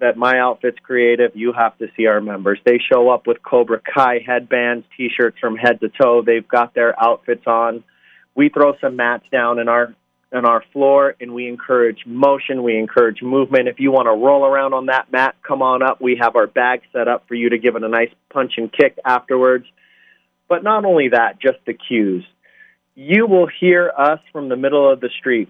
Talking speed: 210 wpm